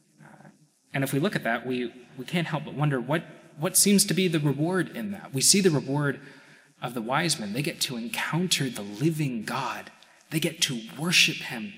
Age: 20-39